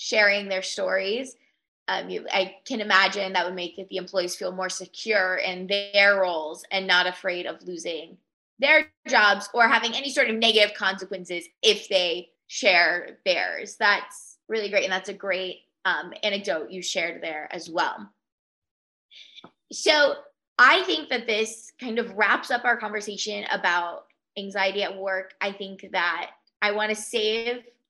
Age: 20-39